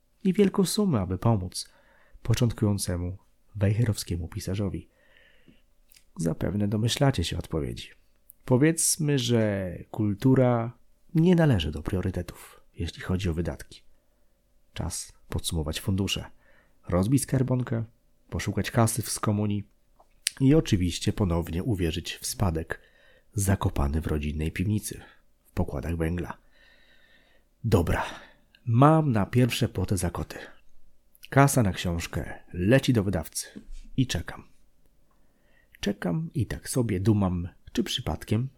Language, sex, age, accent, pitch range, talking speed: Polish, male, 40-59, native, 85-125 Hz, 105 wpm